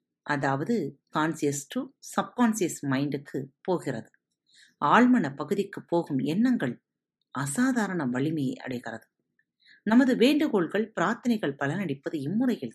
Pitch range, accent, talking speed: 150-245 Hz, native, 85 wpm